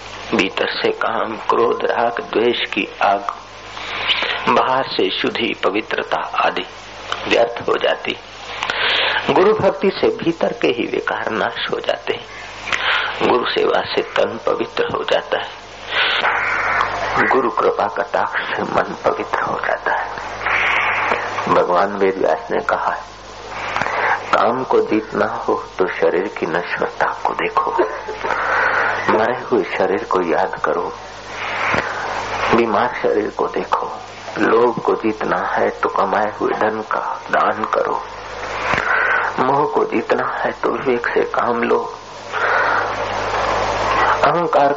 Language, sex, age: Hindi, male, 50-69